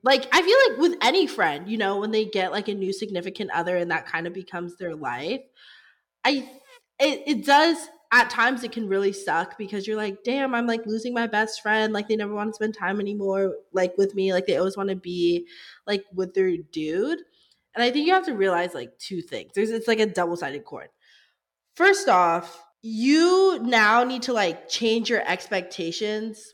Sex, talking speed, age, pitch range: female, 205 wpm, 20-39, 185-255 Hz